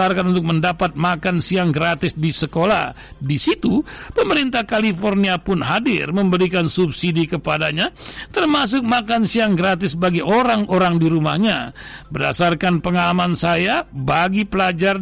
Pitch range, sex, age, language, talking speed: 175-235 Hz, male, 60-79, Indonesian, 115 wpm